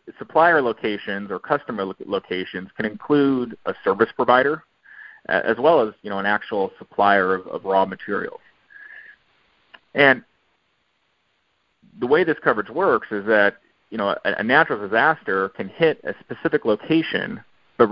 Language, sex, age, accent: English, male, 30-49, American